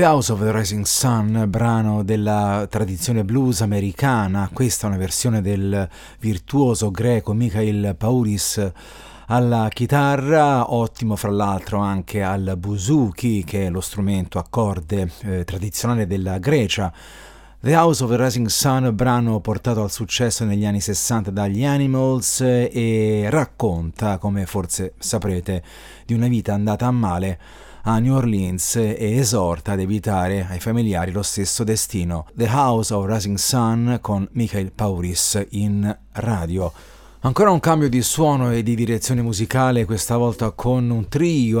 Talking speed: 145 wpm